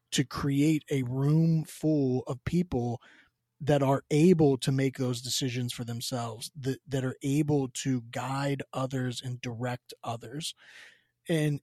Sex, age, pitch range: male, 20-39, 125-160 Hz